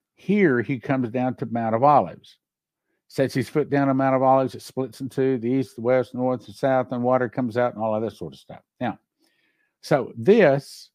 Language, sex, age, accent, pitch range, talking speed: English, male, 60-79, American, 110-140 Hz, 225 wpm